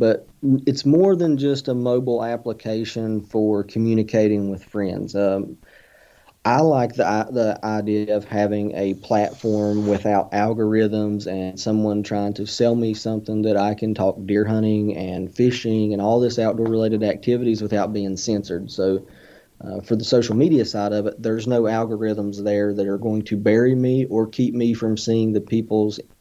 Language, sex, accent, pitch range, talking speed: English, male, American, 105-115 Hz, 165 wpm